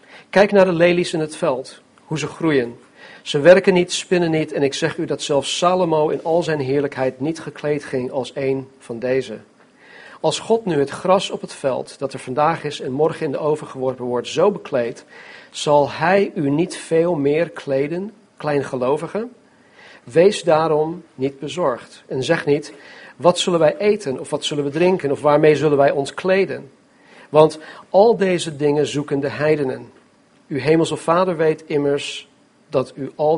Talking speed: 180 wpm